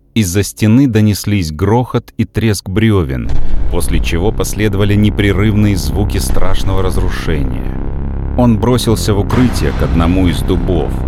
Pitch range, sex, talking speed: 80-105 Hz, male, 120 wpm